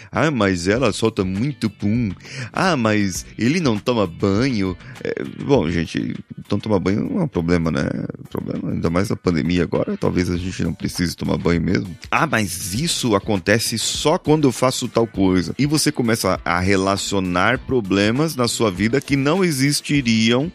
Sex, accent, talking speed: male, Brazilian, 180 wpm